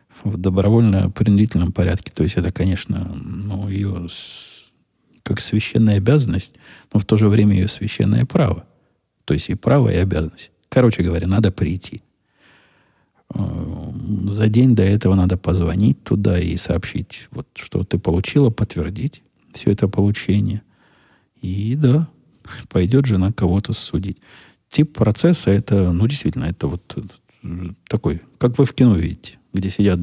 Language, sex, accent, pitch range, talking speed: Russian, male, native, 95-115 Hz, 135 wpm